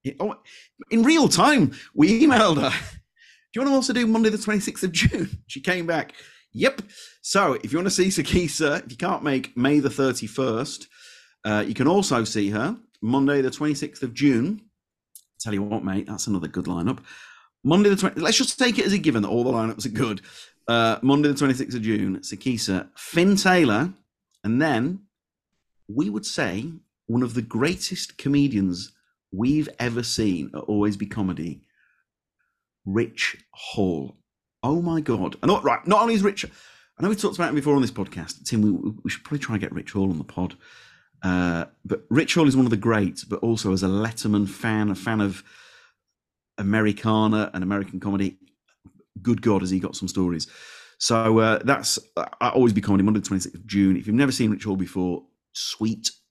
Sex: male